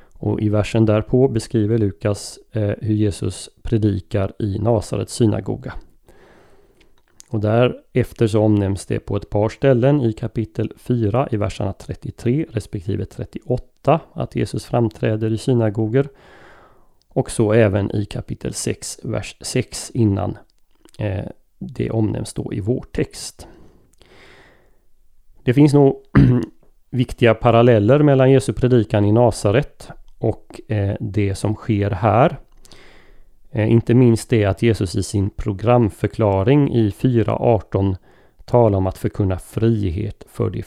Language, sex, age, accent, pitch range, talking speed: Swedish, male, 30-49, native, 100-120 Hz, 120 wpm